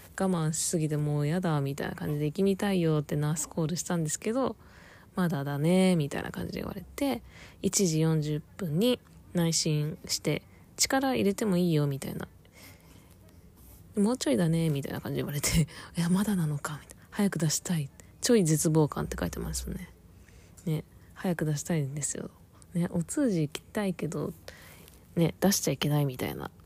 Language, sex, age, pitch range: Japanese, female, 20-39, 150-195 Hz